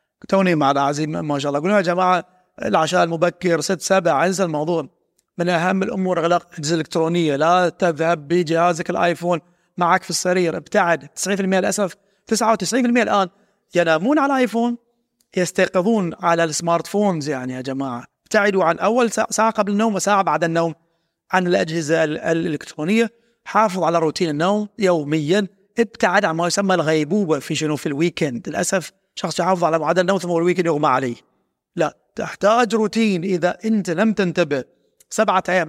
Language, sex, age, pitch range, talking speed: Arabic, male, 30-49, 165-200 Hz, 150 wpm